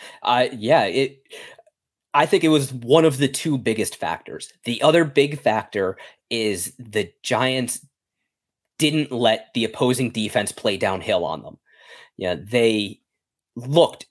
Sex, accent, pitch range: male, American, 115-150 Hz